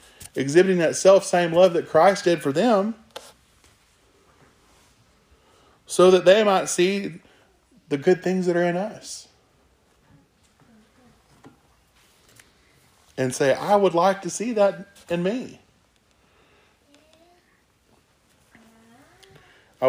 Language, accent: English, American